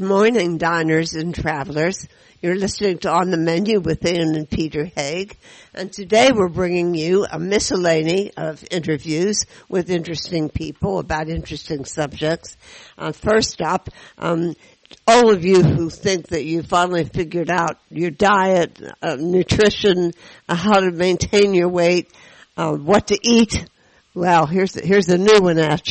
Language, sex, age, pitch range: English, female, 60-79, 160-185 Hz